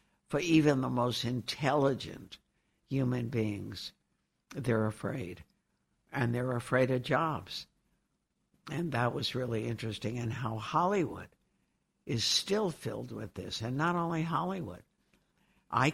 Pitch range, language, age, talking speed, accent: 105-135 Hz, English, 60-79, 120 wpm, American